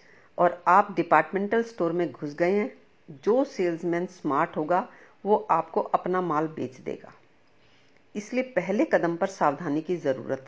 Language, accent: Hindi, native